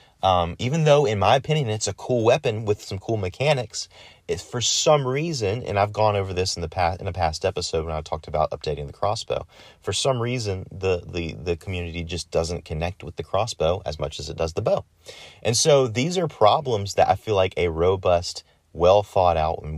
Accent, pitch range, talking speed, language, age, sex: American, 85-105 Hz, 210 wpm, English, 30-49, male